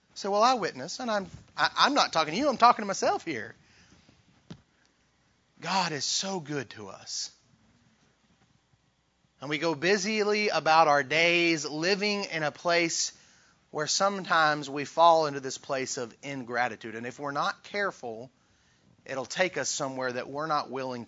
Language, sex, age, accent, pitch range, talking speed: English, male, 30-49, American, 135-190 Hz, 160 wpm